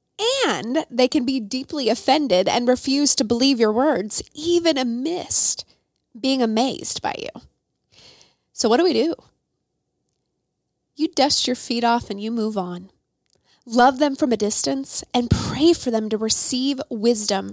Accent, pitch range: American, 205-245 Hz